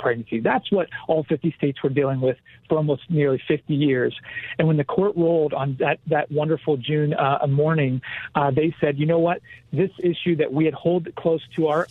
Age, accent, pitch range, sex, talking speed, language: 40-59, American, 140-165 Hz, male, 205 wpm, English